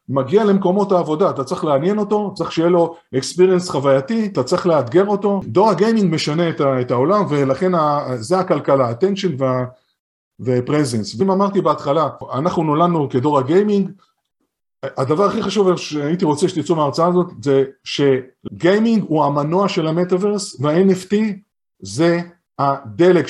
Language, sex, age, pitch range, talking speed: Hebrew, male, 50-69, 140-190 Hz, 130 wpm